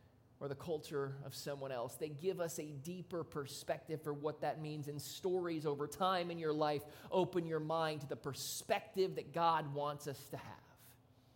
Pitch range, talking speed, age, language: 155-225 Hz, 185 wpm, 30-49, English